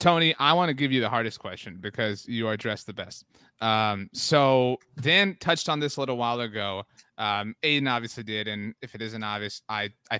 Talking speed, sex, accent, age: 210 wpm, male, American, 30-49